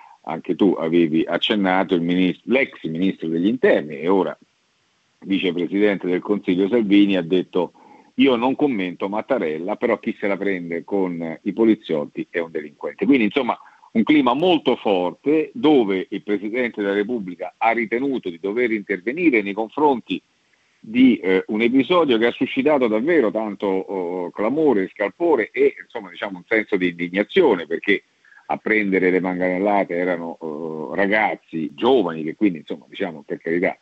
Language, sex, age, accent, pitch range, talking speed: Italian, male, 50-69, native, 90-120 Hz, 150 wpm